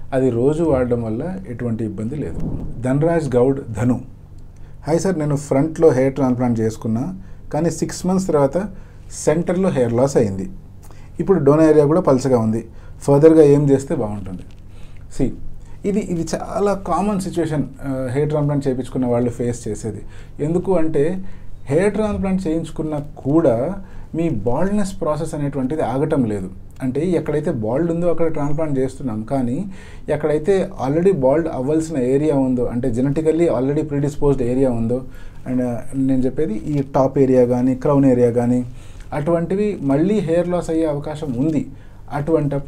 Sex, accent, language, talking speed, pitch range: male, Indian, English, 75 wpm, 120-160 Hz